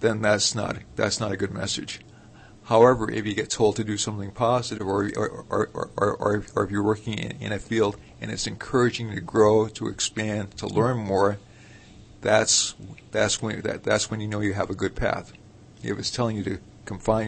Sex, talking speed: male, 205 wpm